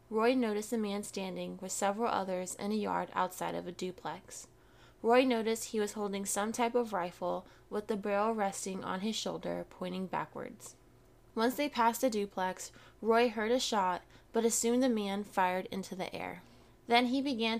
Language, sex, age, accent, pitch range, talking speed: English, female, 20-39, American, 190-235 Hz, 185 wpm